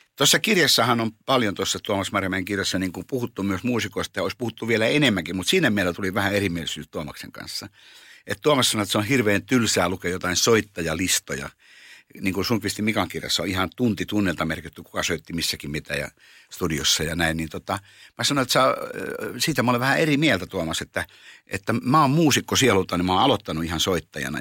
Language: Finnish